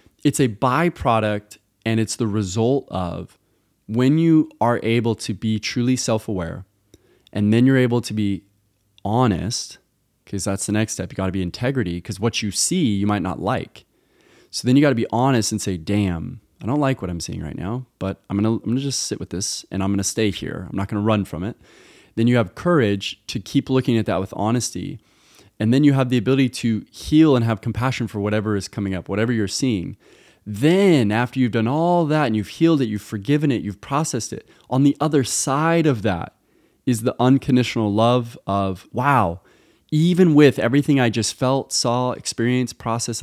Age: 20-39